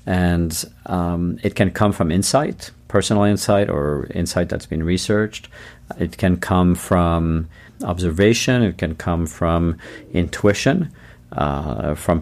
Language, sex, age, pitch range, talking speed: English, male, 50-69, 85-105 Hz, 130 wpm